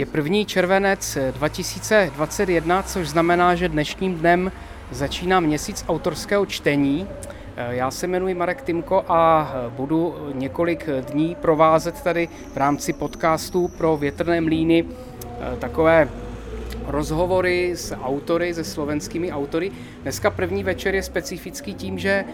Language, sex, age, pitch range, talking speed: Czech, male, 30-49, 150-180 Hz, 120 wpm